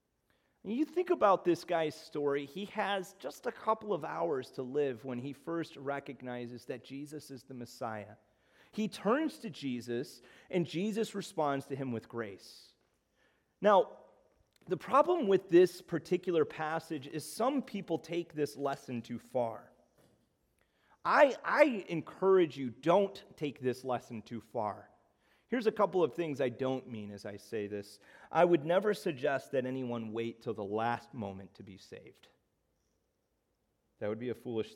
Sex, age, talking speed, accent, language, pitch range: male, 30-49, 155 wpm, American, English, 130-185 Hz